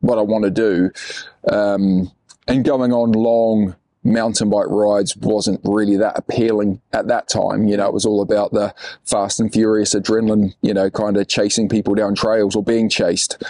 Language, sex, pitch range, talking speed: English, male, 100-115 Hz, 185 wpm